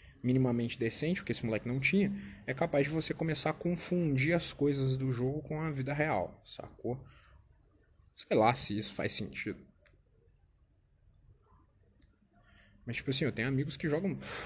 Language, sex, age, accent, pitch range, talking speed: Portuguese, male, 20-39, Brazilian, 115-150 Hz, 160 wpm